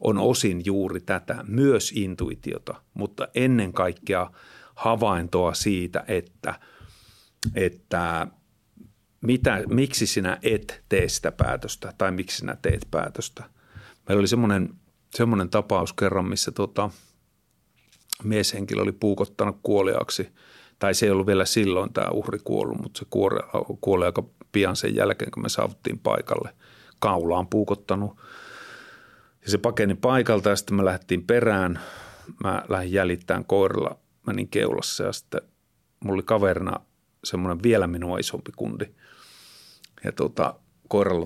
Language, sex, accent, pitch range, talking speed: Finnish, male, native, 95-110 Hz, 130 wpm